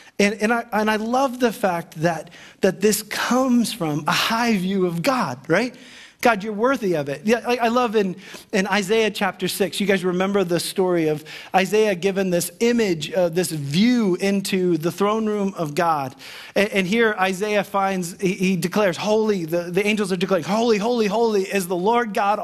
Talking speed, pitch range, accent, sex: 195 wpm, 180-220 Hz, American, male